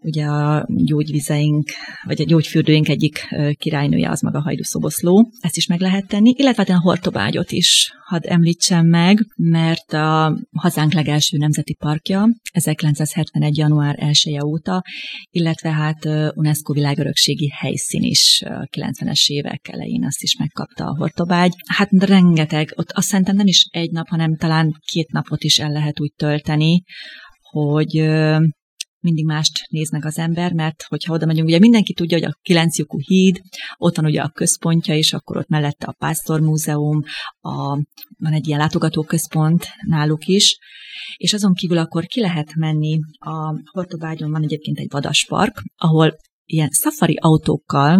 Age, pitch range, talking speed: 30-49, 150-175 Hz, 145 wpm